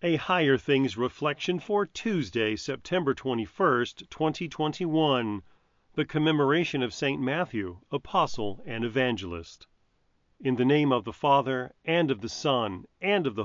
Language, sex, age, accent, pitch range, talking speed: English, male, 40-59, American, 105-150 Hz, 135 wpm